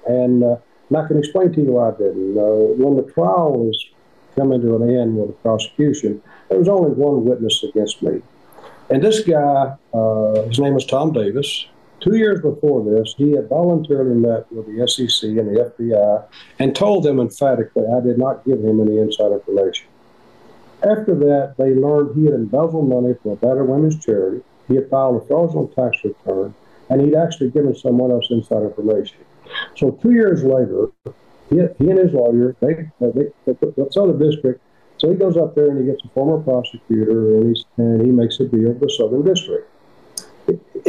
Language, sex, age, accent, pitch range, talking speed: English, male, 50-69, American, 115-155 Hz, 190 wpm